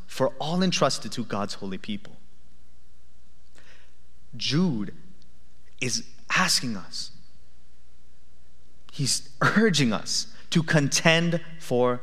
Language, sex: English, male